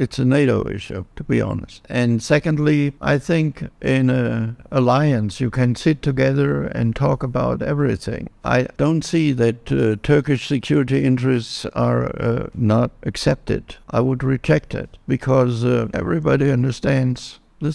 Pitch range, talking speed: 110-140 Hz, 145 wpm